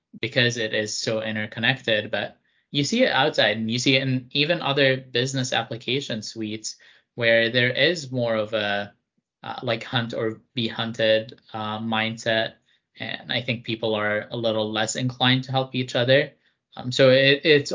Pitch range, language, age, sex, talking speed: 110-130 Hz, English, 20-39, male, 170 wpm